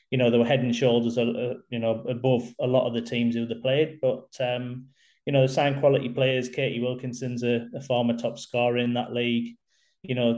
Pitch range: 120-130 Hz